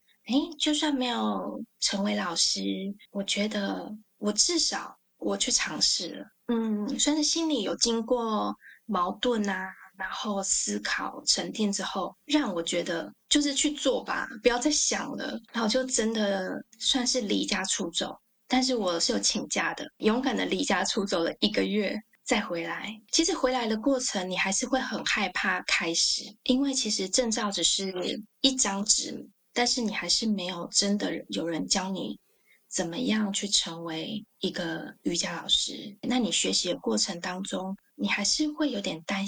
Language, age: Chinese, 20-39